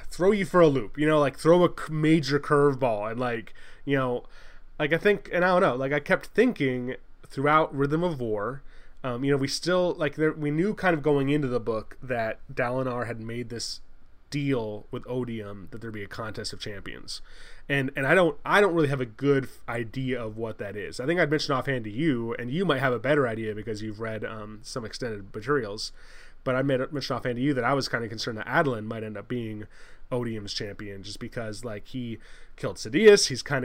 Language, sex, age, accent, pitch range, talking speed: English, male, 20-39, American, 115-155 Hz, 225 wpm